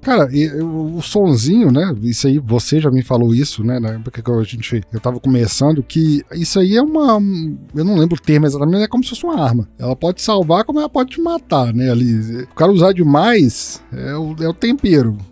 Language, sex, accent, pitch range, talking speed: Portuguese, male, Brazilian, 130-175 Hz, 230 wpm